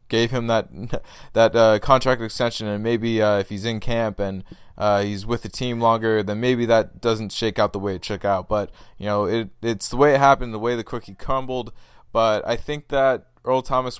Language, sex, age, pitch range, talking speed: English, male, 20-39, 100-120 Hz, 225 wpm